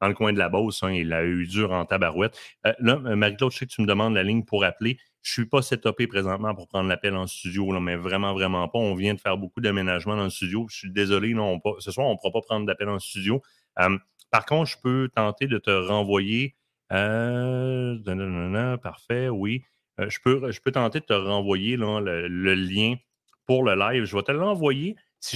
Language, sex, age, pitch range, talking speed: French, male, 30-49, 100-130 Hz, 220 wpm